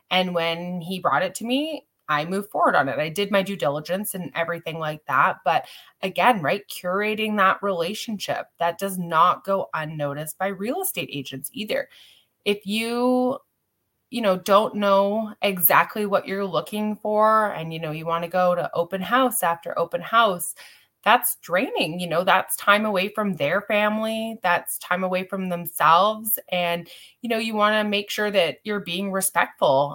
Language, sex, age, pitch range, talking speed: English, female, 20-39, 160-195 Hz, 175 wpm